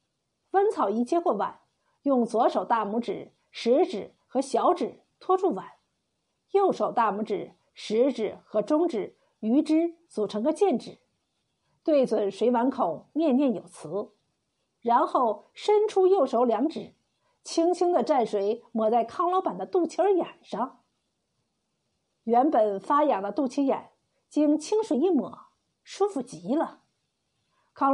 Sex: female